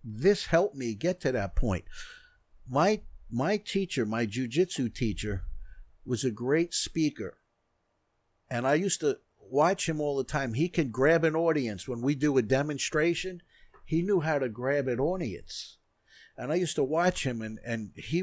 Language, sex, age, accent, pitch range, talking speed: English, male, 50-69, American, 115-170 Hz, 175 wpm